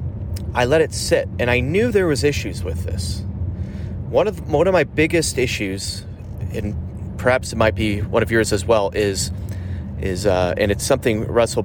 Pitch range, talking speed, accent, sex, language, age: 95-110 Hz, 185 wpm, American, male, English, 30-49